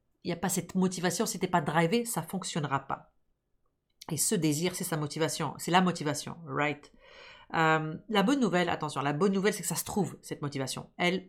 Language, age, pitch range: French, 40-59, 160-195 Hz